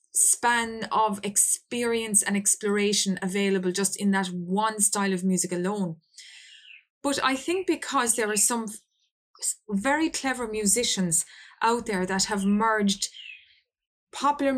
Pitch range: 195-235 Hz